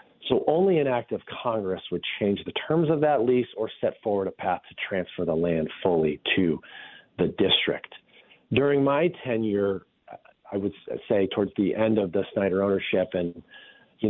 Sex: male